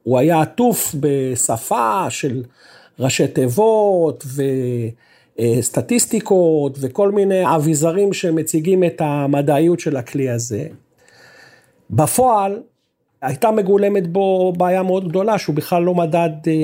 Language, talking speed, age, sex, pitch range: Hebrew, 100 wpm, 50-69, male, 140-190 Hz